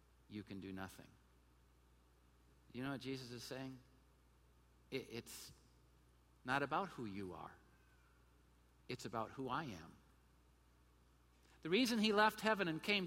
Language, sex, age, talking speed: English, male, 50-69, 130 wpm